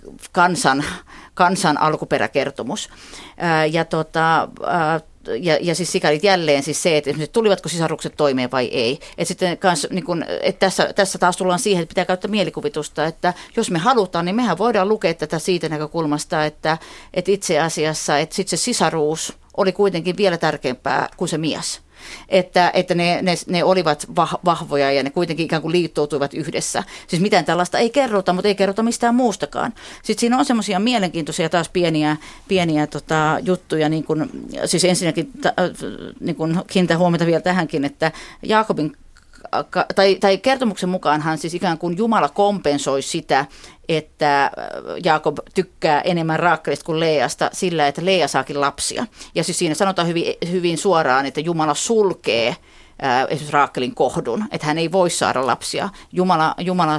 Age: 40-59